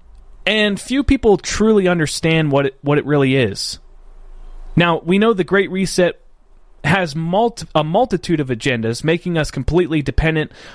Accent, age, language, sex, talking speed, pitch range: American, 30-49, English, male, 150 wpm, 135-185 Hz